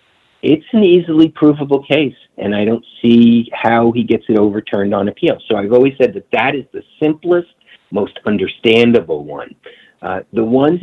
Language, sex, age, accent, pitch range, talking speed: English, male, 50-69, American, 115-155 Hz, 170 wpm